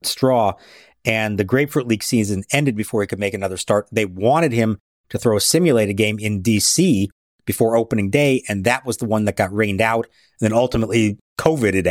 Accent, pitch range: American, 100-130 Hz